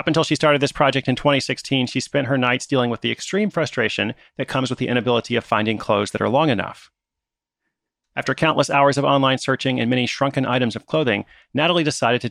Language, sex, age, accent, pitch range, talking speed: English, male, 30-49, American, 120-155 Hz, 215 wpm